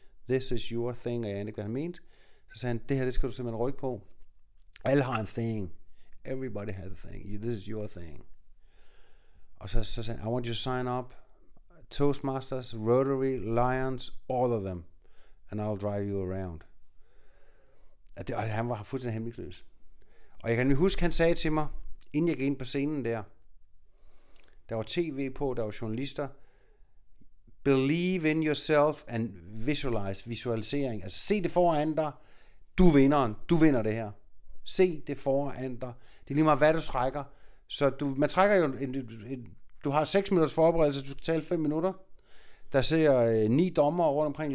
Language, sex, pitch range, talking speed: Danish, male, 110-150 Hz, 180 wpm